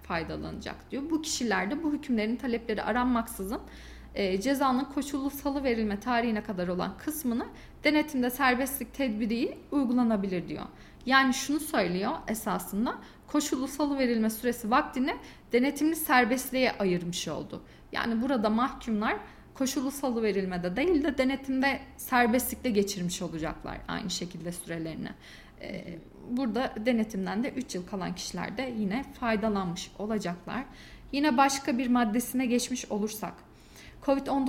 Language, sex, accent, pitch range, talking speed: Turkish, female, native, 210-265 Hz, 120 wpm